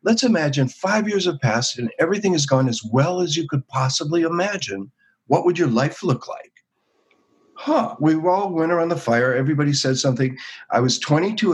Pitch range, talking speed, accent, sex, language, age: 115-150 Hz, 185 wpm, American, male, English, 50-69